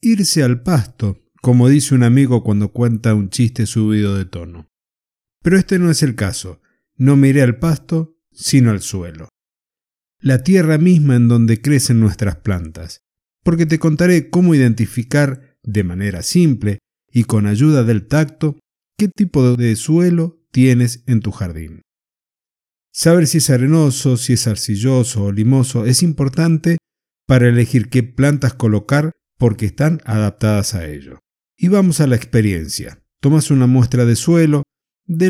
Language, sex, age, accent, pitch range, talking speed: Spanish, male, 50-69, Argentinian, 110-155 Hz, 150 wpm